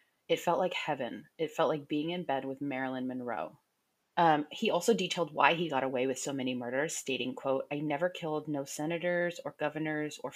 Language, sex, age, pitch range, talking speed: English, female, 30-49, 145-170 Hz, 205 wpm